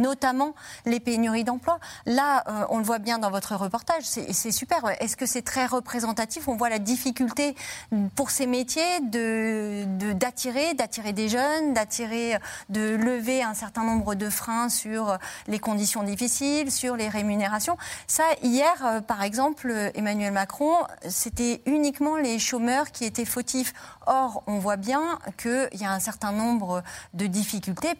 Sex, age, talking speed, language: female, 30-49, 160 wpm, French